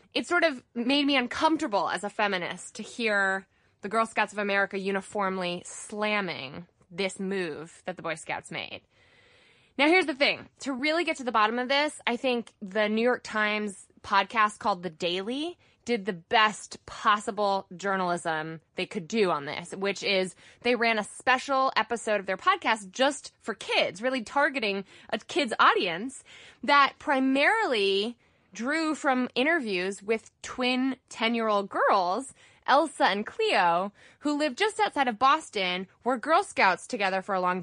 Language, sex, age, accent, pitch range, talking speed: English, female, 20-39, American, 195-270 Hz, 160 wpm